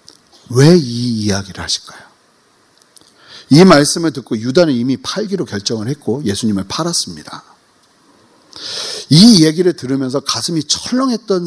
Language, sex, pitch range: Korean, male, 120-190 Hz